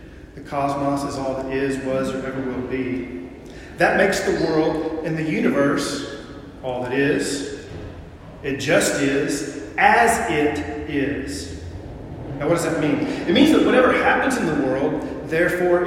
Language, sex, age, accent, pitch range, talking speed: English, male, 40-59, American, 140-165 Hz, 155 wpm